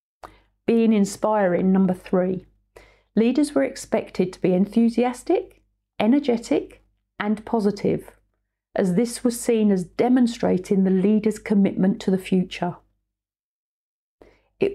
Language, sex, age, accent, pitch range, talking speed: English, female, 40-59, British, 185-220 Hz, 105 wpm